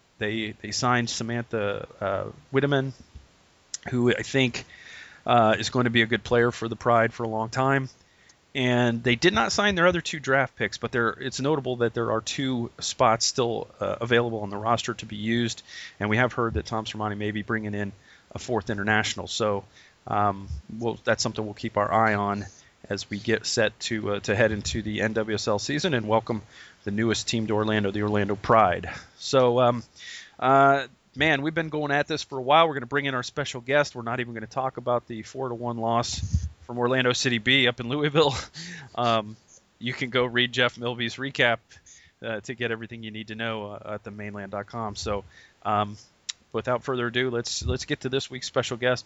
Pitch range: 110-125 Hz